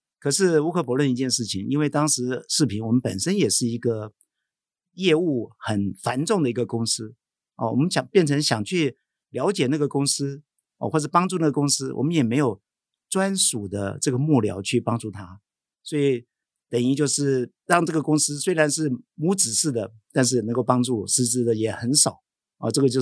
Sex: male